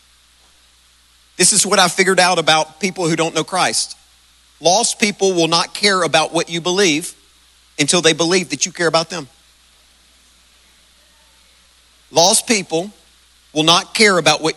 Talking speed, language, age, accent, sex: 150 wpm, English, 40-59, American, male